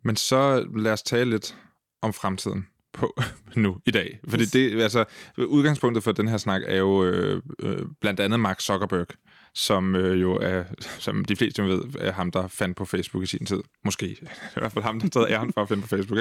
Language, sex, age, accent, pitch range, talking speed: Danish, male, 20-39, native, 95-115 Hz, 225 wpm